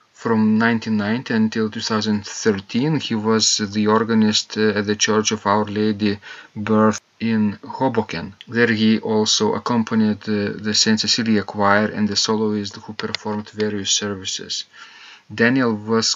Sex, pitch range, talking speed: male, 105-115 Hz, 135 wpm